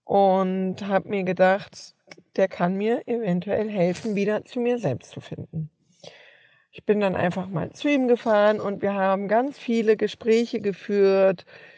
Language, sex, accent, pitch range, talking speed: German, female, German, 195-245 Hz, 155 wpm